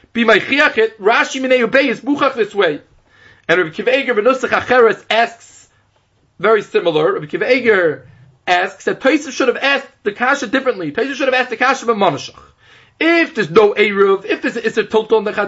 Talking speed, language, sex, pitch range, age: 145 wpm, English, male, 215-290 Hz, 30-49